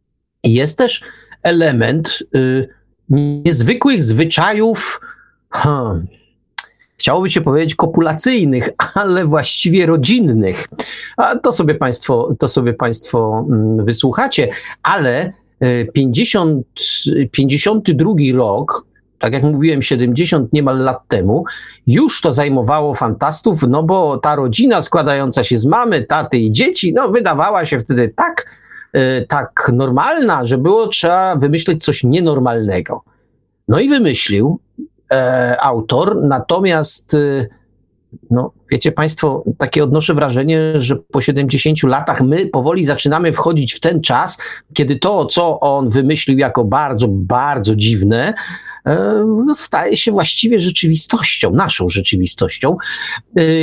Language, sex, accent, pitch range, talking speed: Polish, male, native, 125-170 Hz, 115 wpm